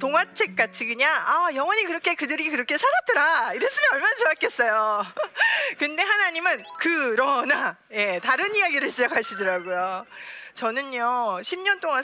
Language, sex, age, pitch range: Korean, female, 40-59, 240-365 Hz